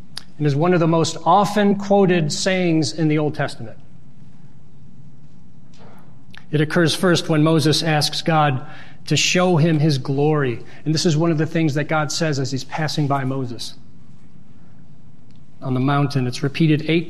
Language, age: English, 40-59